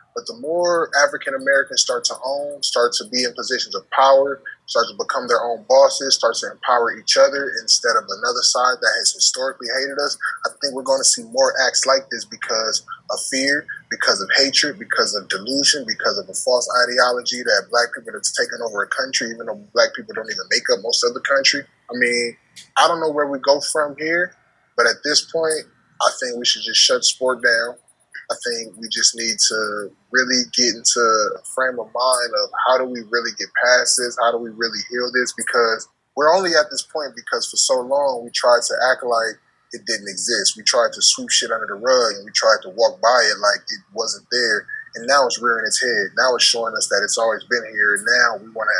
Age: 20-39